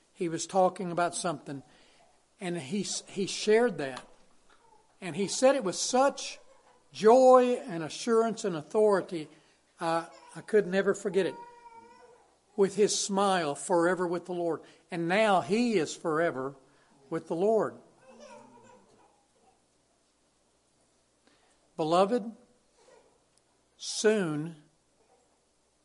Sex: male